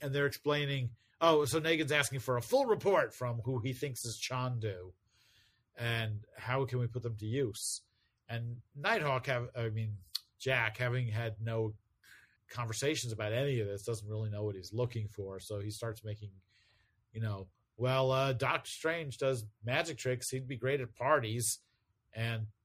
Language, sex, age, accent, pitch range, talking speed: English, male, 40-59, American, 105-130 Hz, 170 wpm